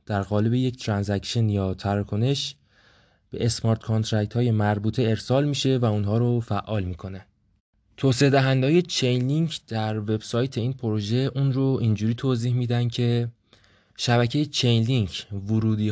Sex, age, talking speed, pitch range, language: male, 20-39, 130 wpm, 105-125 Hz, English